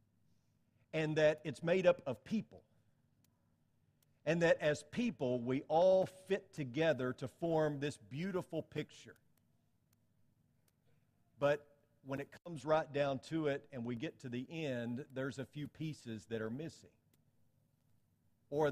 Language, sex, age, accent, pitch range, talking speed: English, male, 50-69, American, 125-160 Hz, 135 wpm